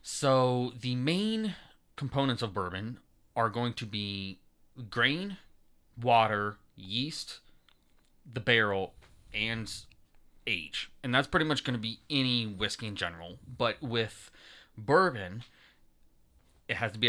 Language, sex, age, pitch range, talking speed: English, male, 30-49, 105-125 Hz, 125 wpm